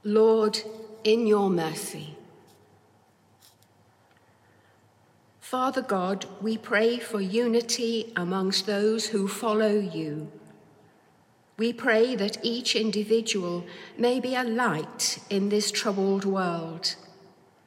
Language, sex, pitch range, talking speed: English, female, 180-225 Hz, 95 wpm